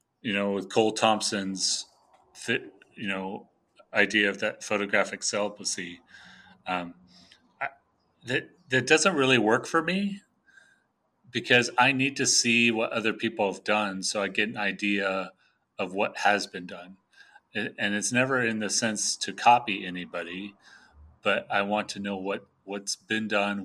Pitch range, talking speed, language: 95-110 Hz, 150 wpm, English